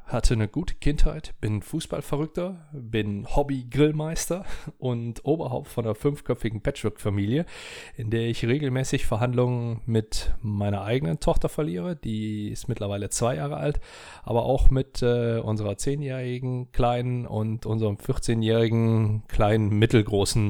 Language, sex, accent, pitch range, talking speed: German, male, German, 110-145 Hz, 125 wpm